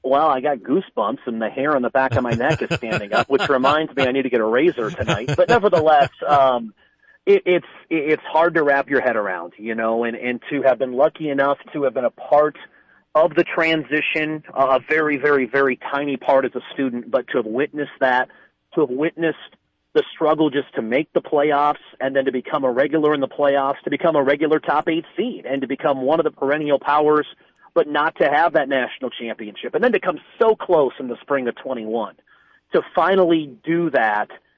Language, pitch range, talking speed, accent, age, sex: English, 135-160 Hz, 215 wpm, American, 40-59, male